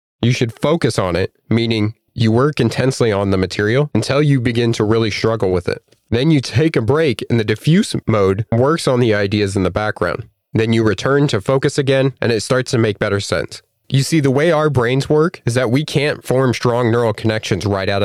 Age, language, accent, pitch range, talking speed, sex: 30-49, English, American, 110-135 Hz, 220 wpm, male